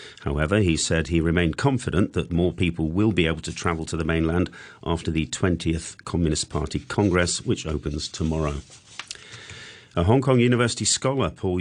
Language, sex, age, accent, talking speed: English, male, 40-59, British, 165 wpm